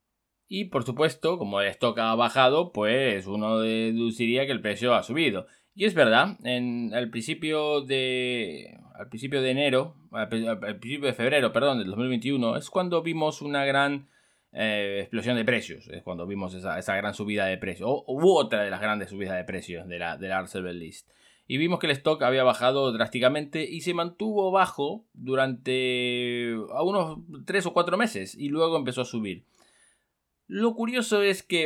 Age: 20-39